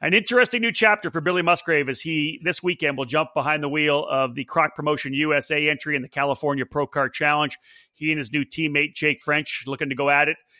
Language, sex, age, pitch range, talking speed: English, male, 40-59, 145-185 Hz, 225 wpm